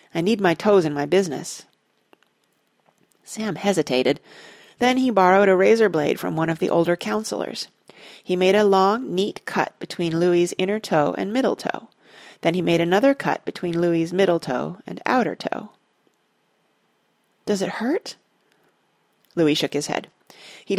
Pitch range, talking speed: 165-215 Hz, 155 wpm